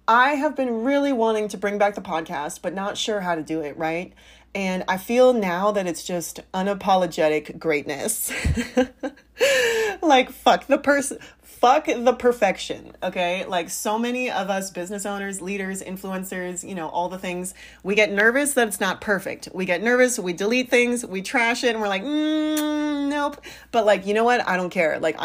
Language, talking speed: English, 190 wpm